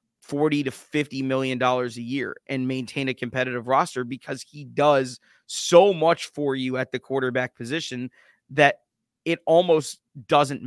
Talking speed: 150 wpm